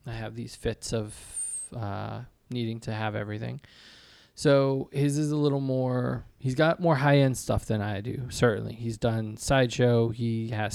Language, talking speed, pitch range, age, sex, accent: English, 165 wpm, 115-135 Hz, 20-39, male, American